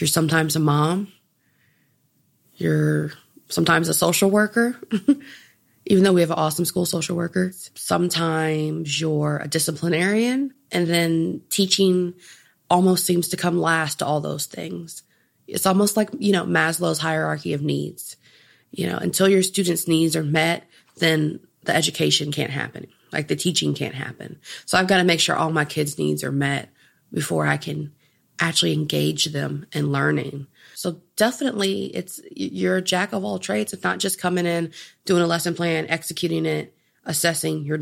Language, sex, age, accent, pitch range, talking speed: English, female, 30-49, American, 150-185 Hz, 165 wpm